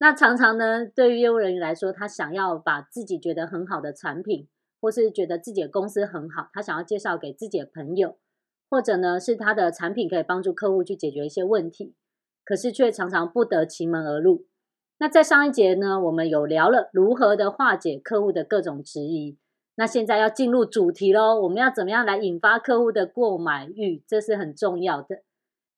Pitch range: 175-250 Hz